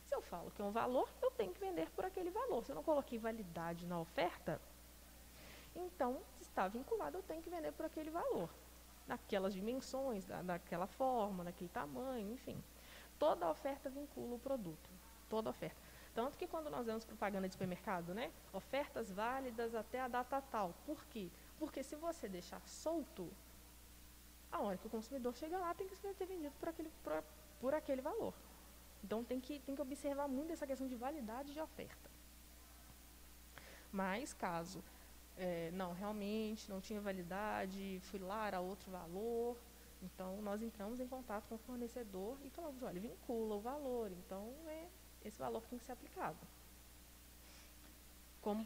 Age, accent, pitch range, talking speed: 20-39, Brazilian, 180-275 Hz, 165 wpm